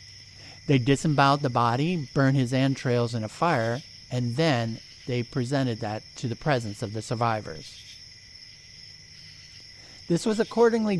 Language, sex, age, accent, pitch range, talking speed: English, male, 50-69, American, 110-150 Hz, 130 wpm